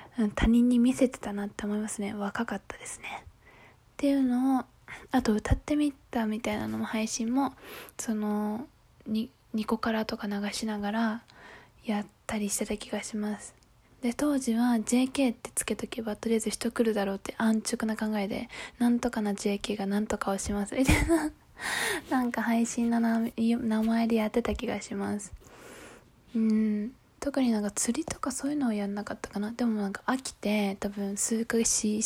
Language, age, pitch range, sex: Japanese, 20-39, 210-245 Hz, female